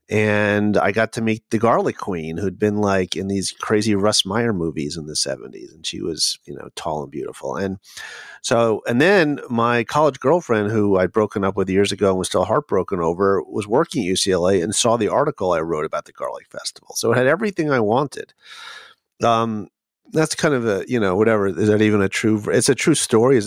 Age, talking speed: 40-59, 215 wpm